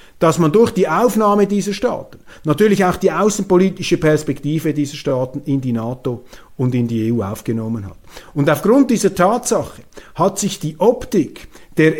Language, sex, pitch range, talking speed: German, male, 155-210 Hz, 160 wpm